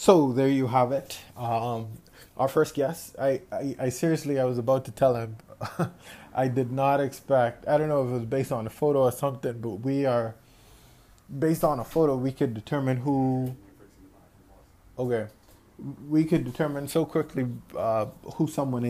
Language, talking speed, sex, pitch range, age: English, 175 wpm, male, 115-140 Hz, 20-39